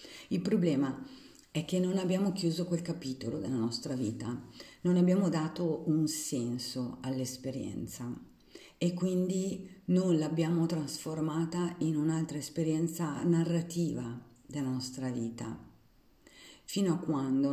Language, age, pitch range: Italian, 50-69, 130-160 Hz